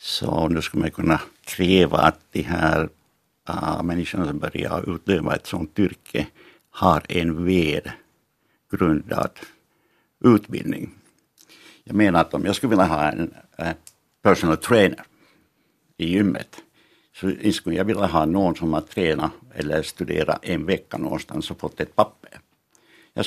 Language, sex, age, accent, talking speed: Finnish, male, 60-79, native, 140 wpm